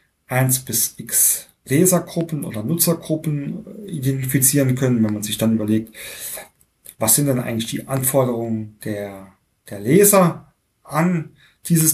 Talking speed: 120 wpm